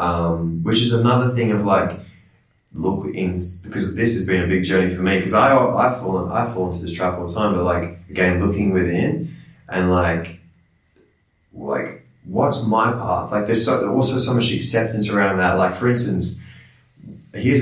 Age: 20-39